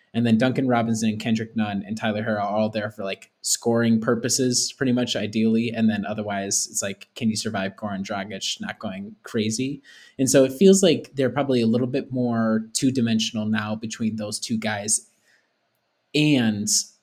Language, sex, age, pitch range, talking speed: English, male, 20-39, 110-130 Hz, 180 wpm